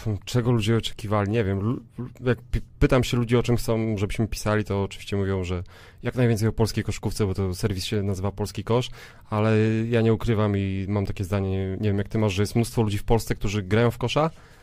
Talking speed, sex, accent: 220 wpm, male, native